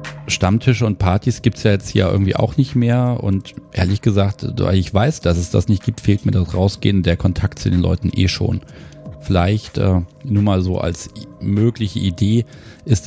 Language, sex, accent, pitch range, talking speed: German, male, German, 95-115 Hz, 195 wpm